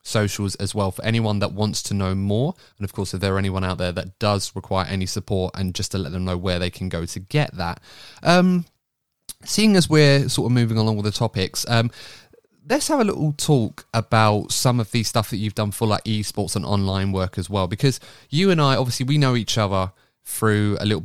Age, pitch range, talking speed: 20-39, 100-130 Hz, 235 wpm